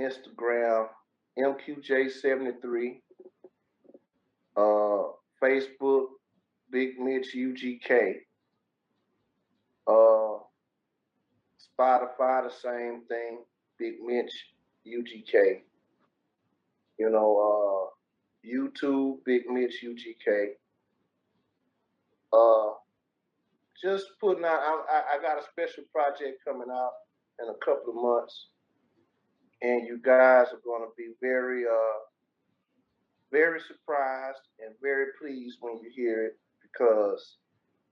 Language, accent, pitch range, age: English, American, 120-175 Hz, 30-49